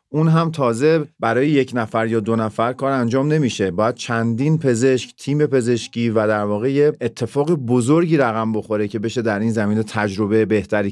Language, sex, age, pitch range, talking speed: Persian, male, 40-59, 110-135 Hz, 175 wpm